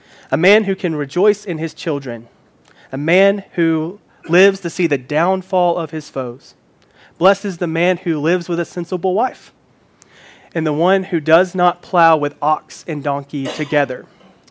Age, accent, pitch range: 30-49, American, 145-180 Hz